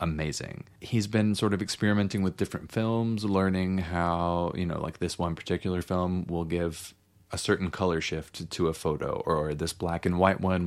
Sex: male